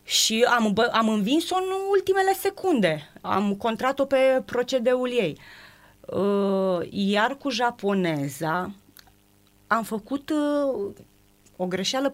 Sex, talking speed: female, 95 wpm